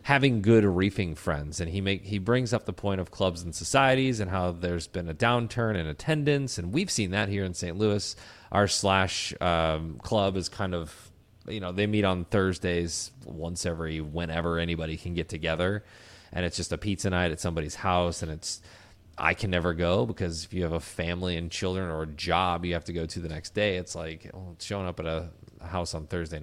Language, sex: English, male